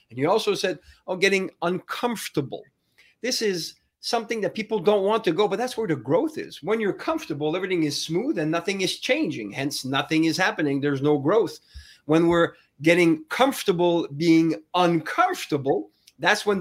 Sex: male